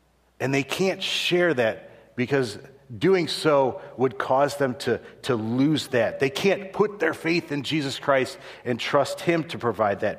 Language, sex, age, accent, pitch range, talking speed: English, male, 50-69, American, 110-150 Hz, 170 wpm